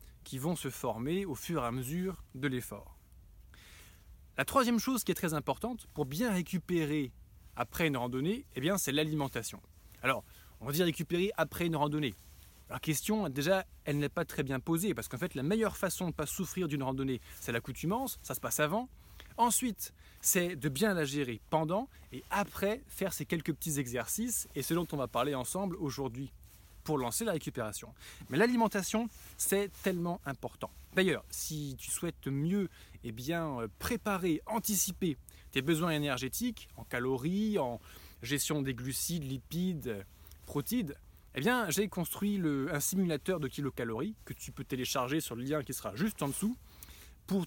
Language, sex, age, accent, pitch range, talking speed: French, male, 20-39, French, 130-190 Hz, 175 wpm